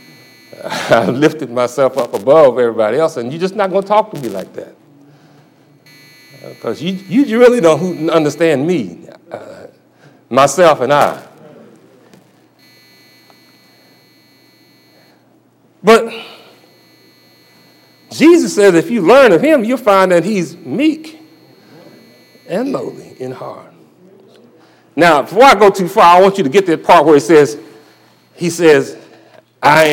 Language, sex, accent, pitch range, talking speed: English, male, American, 145-205 Hz, 130 wpm